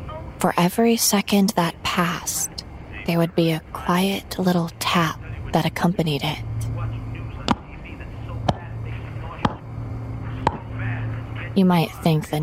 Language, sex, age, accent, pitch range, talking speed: English, female, 20-39, American, 140-170 Hz, 90 wpm